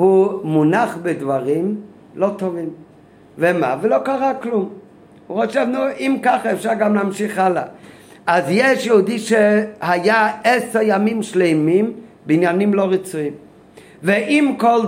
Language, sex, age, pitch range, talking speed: Hebrew, male, 50-69, 160-215 Hz, 120 wpm